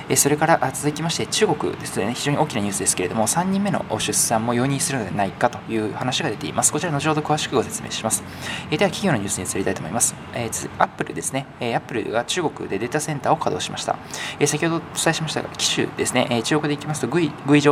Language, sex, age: Japanese, male, 20-39